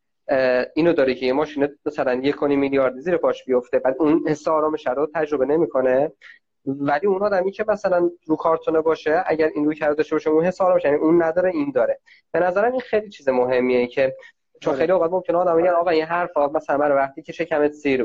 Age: 20-39